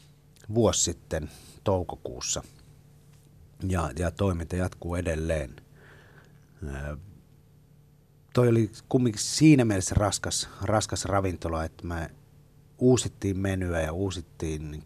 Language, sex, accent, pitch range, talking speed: Finnish, male, native, 80-125 Hz, 95 wpm